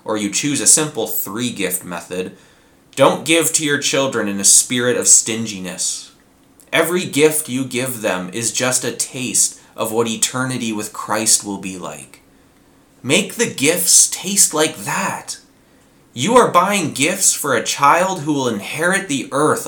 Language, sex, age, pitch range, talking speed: English, male, 20-39, 110-165 Hz, 160 wpm